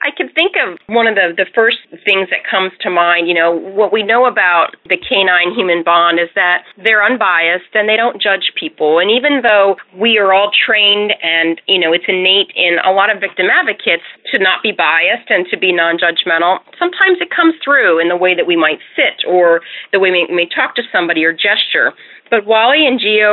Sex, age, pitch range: female, 30-49, 175-210 Hz